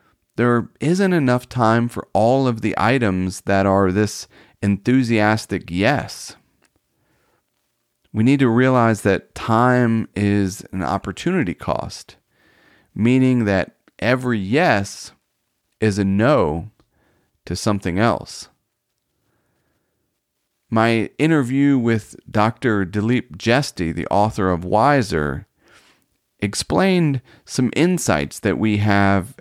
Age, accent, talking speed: 40-59, American, 100 wpm